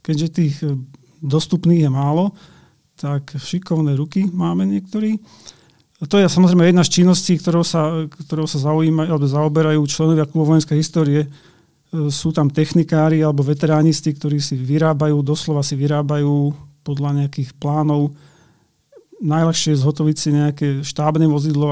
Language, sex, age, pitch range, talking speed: Slovak, male, 40-59, 145-155 Hz, 130 wpm